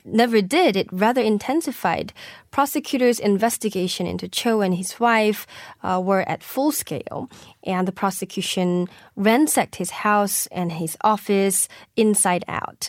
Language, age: Korean, 10-29